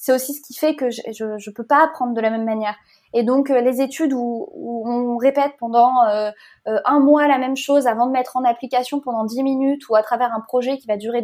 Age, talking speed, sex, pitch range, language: 20-39, 260 wpm, female, 220-280 Hz, French